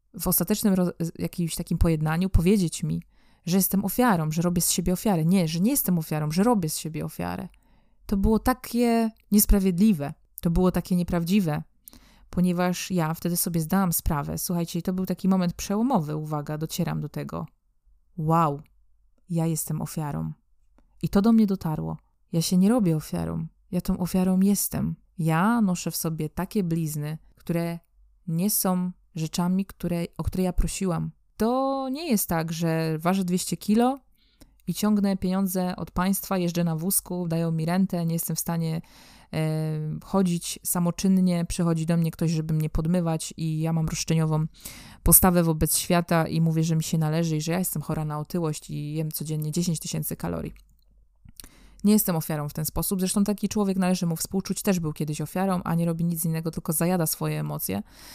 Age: 20-39